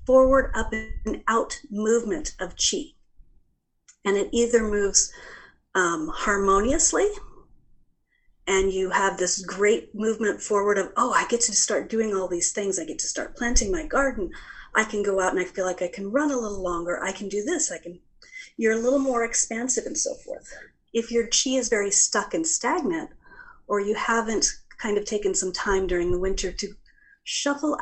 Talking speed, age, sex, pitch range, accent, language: 185 wpm, 40-59, female, 190-250 Hz, American, English